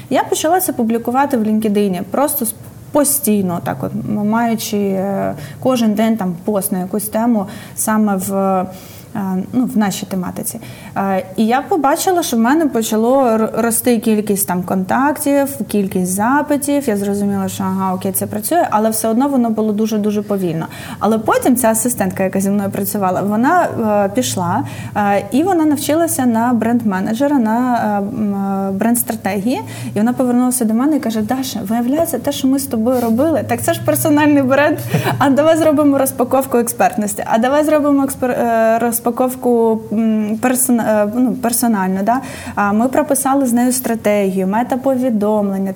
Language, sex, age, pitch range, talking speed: Ukrainian, female, 20-39, 205-260 Hz, 145 wpm